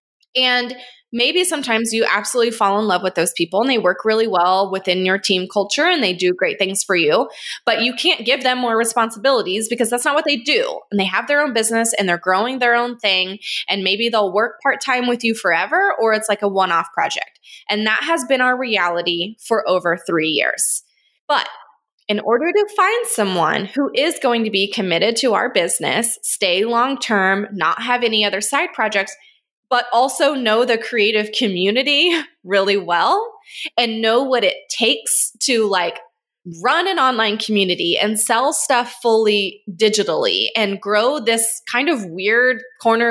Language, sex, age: English, female, 20-39